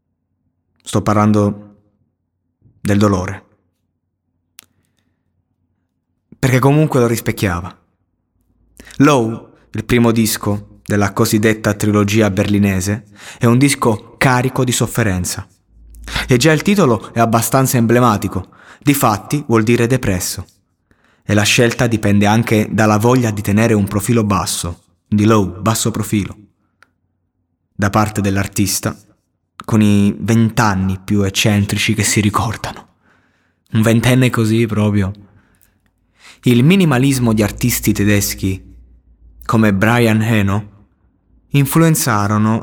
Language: Italian